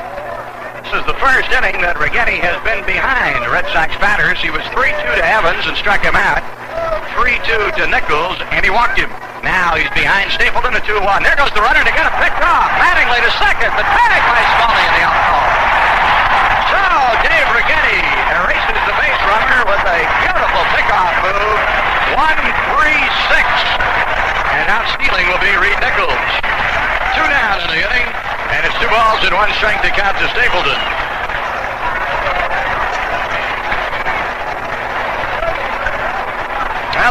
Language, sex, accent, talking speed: English, male, American, 145 wpm